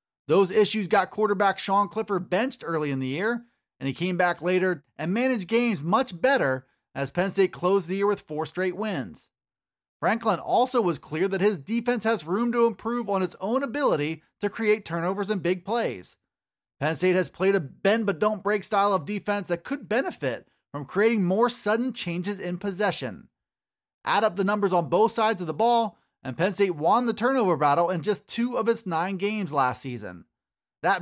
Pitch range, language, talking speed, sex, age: 170-220 Hz, English, 195 wpm, male, 30-49